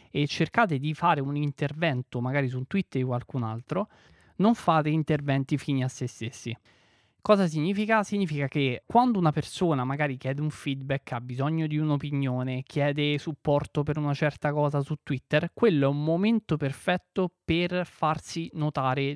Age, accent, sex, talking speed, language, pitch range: 20-39, native, male, 160 wpm, Italian, 130-165 Hz